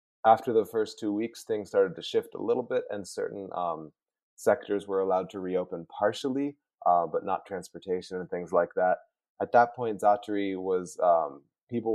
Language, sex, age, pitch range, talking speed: English, male, 30-49, 90-120 Hz, 180 wpm